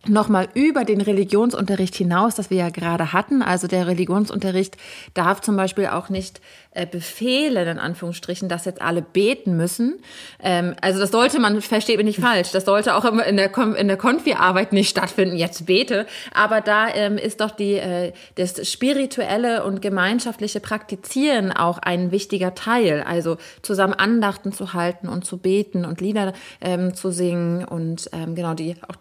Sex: female